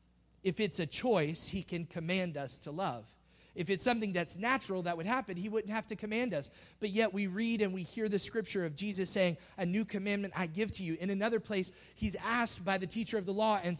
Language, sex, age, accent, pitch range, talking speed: English, male, 30-49, American, 145-205 Hz, 240 wpm